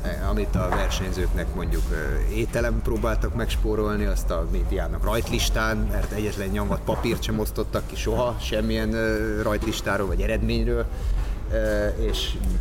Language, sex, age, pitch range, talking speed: Hungarian, male, 30-49, 80-95 Hz, 115 wpm